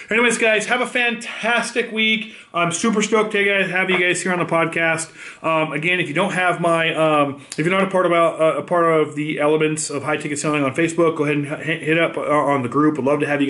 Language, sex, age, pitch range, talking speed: English, male, 30-49, 135-165 Hz, 235 wpm